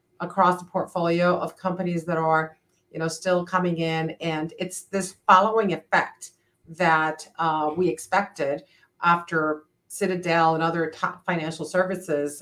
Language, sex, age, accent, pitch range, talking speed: English, female, 50-69, American, 160-185 Hz, 135 wpm